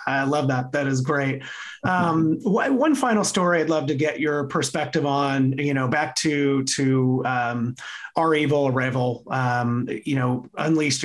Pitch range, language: 130-150 Hz, English